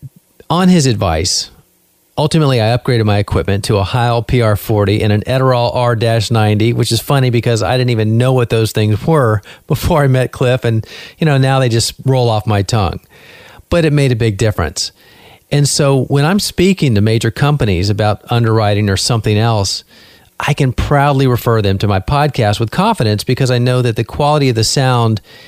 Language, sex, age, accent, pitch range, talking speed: English, male, 40-59, American, 105-140 Hz, 190 wpm